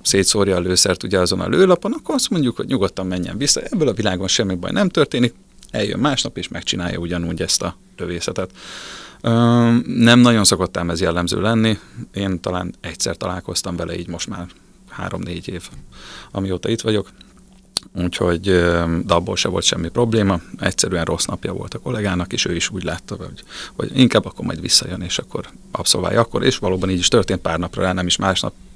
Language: Hungarian